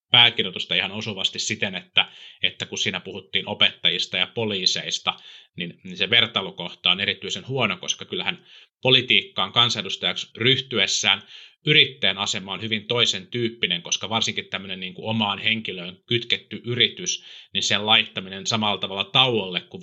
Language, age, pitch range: Finnish, 30-49, 100-120 Hz